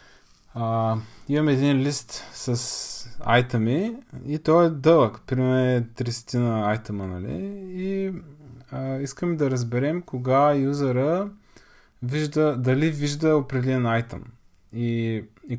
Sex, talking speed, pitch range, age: male, 110 wpm, 115-170 Hz, 20-39